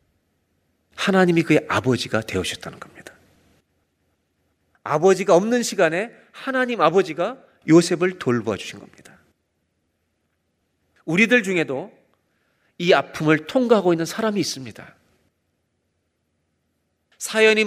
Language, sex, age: Korean, male, 40-59